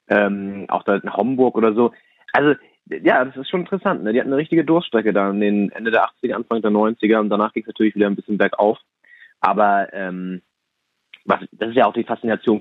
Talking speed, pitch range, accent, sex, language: 225 wpm, 100-120 Hz, German, male, German